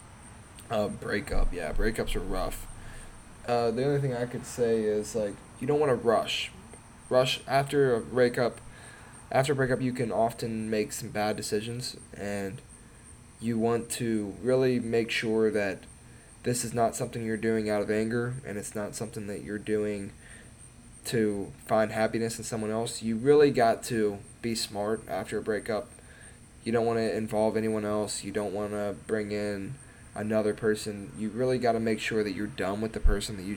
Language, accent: English, American